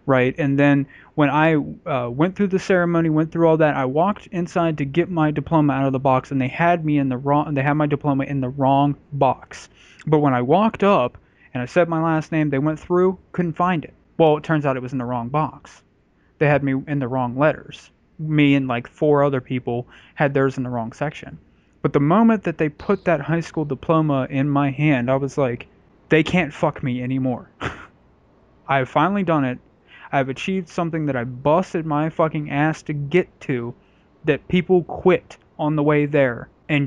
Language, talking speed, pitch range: English, 215 wpm, 135-160 Hz